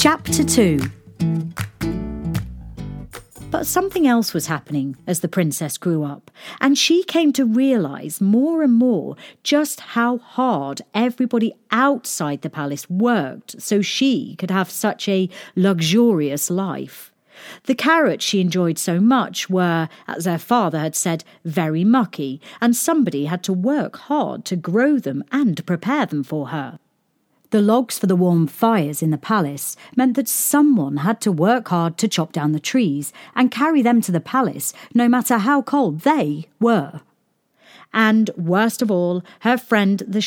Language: English